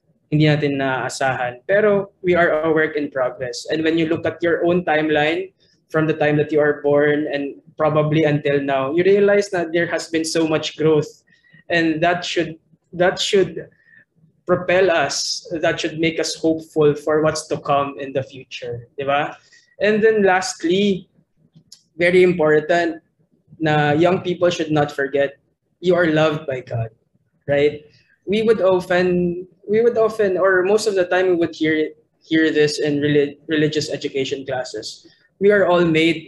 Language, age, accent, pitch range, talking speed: Filipino, 20-39, native, 150-180 Hz, 160 wpm